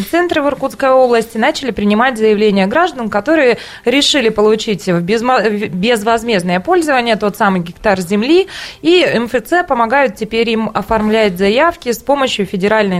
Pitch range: 200-270 Hz